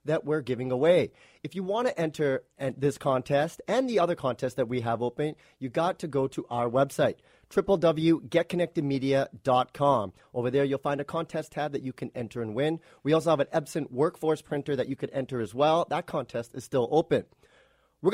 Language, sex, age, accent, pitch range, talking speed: English, male, 30-49, American, 135-180 Hz, 195 wpm